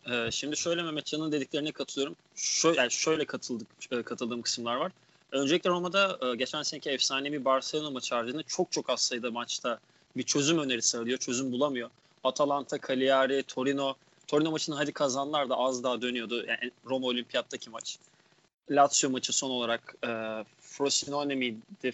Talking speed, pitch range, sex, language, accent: 145 wpm, 135-175 Hz, male, Turkish, native